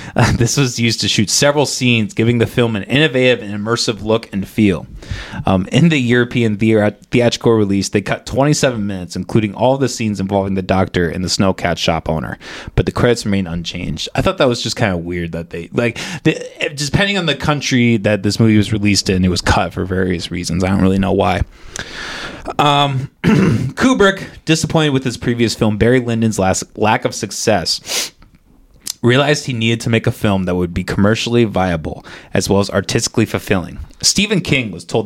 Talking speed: 195 wpm